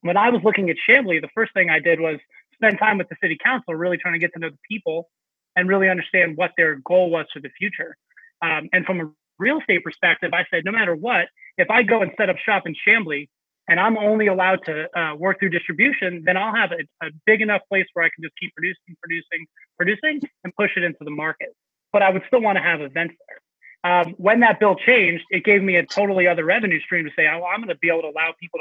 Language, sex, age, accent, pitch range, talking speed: English, male, 30-49, American, 165-205 Hz, 250 wpm